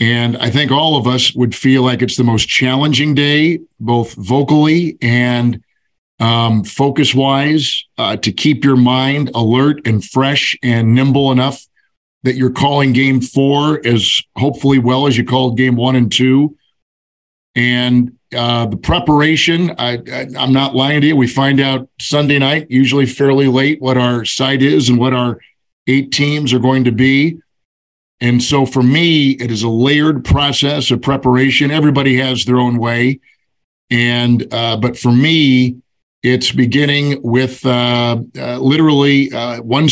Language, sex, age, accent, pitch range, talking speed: English, male, 50-69, American, 120-140 Hz, 155 wpm